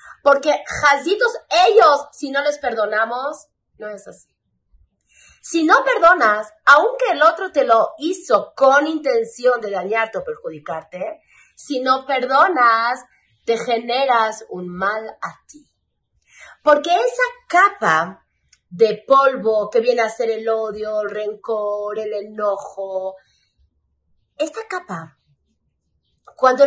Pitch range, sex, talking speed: 215-350 Hz, female, 115 wpm